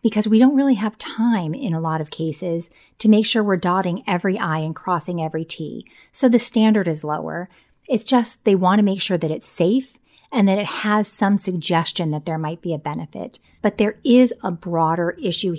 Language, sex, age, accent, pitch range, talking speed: English, female, 40-59, American, 165-210 Hz, 210 wpm